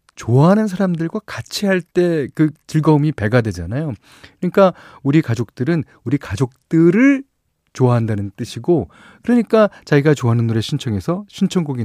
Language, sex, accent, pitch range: Korean, male, native, 105-165 Hz